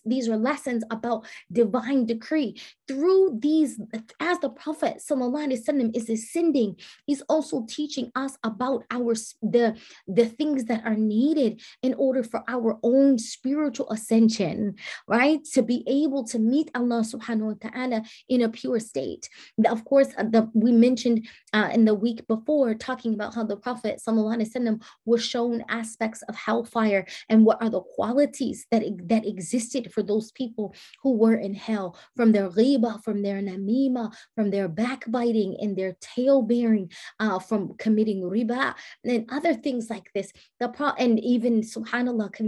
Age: 20-39